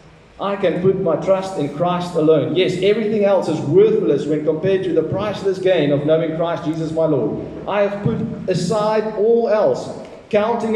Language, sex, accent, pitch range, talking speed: English, male, South African, 165-205 Hz, 180 wpm